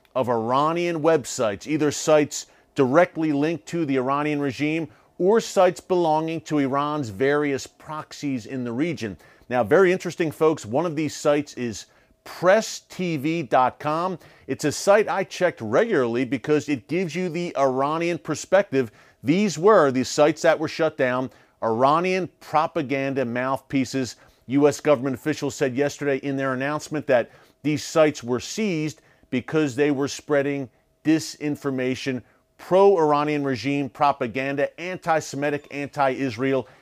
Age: 40-59